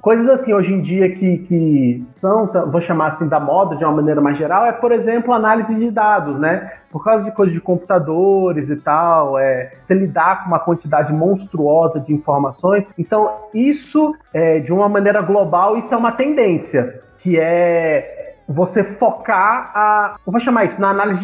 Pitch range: 155-210 Hz